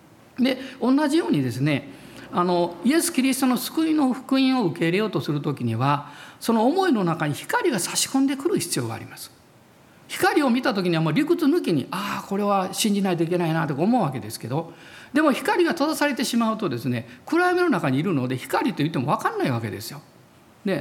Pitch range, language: 170-275 Hz, Japanese